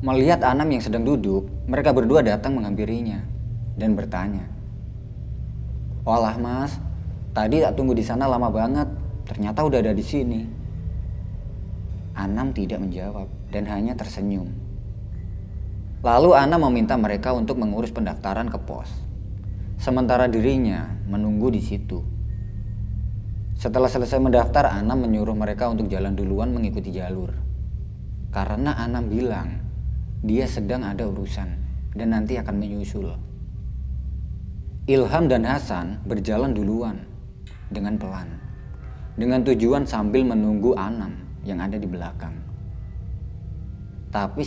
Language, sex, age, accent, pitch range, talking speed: Indonesian, male, 20-39, native, 75-110 Hz, 115 wpm